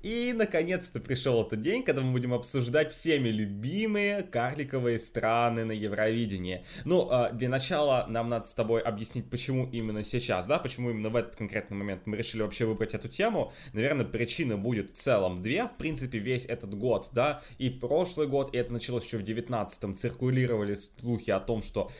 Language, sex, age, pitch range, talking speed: Russian, male, 20-39, 110-130 Hz, 175 wpm